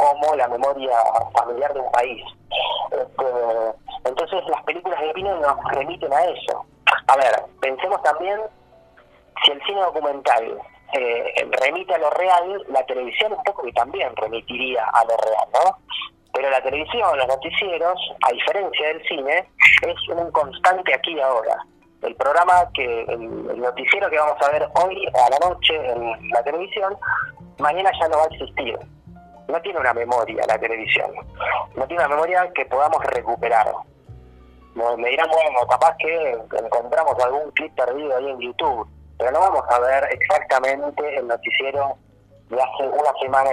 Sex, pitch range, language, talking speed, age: male, 120-175 Hz, Spanish, 155 wpm, 30-49